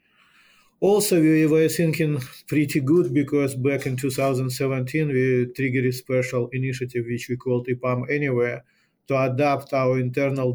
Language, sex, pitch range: English, male, 125-145 Hz